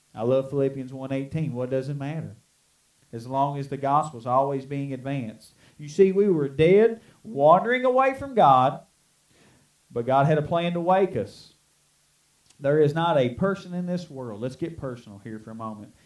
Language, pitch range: English, 125-180 Hz